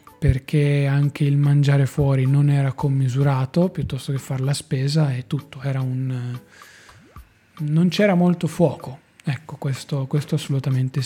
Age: 20-39